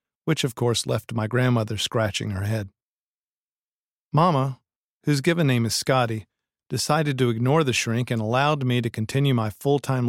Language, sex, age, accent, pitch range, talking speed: English, male, 40-59, American, 115-135 Hz, 160 wpm